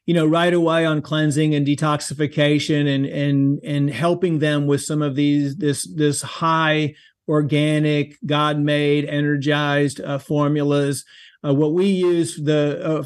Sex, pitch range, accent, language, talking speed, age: male, 135-155 Hz, American, English, 140 wpm, 40-59